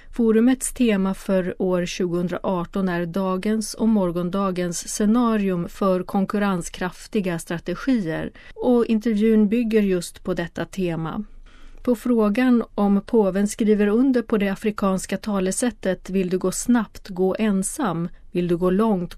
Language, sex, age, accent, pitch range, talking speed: Swedish, female, 30-49, native, 180-225 Hz, 125 wpm